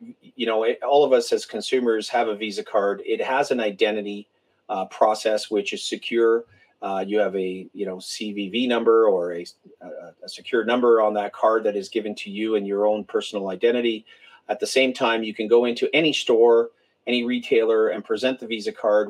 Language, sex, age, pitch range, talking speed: English, male, 40-59, 105-145 Hz, 200 wpm